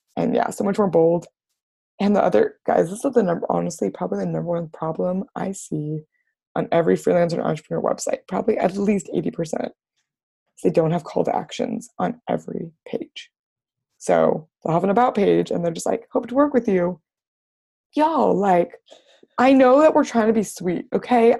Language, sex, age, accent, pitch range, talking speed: English, female, 20-39, American, 180-265 Hz, 185 wpm